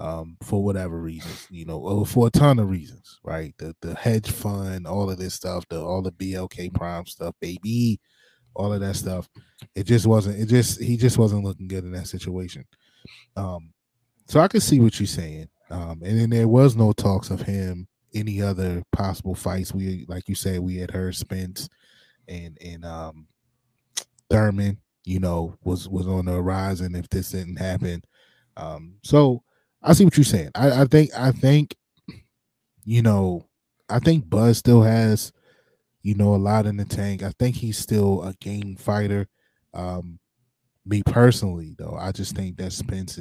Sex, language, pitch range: male, English, 90-115 Hz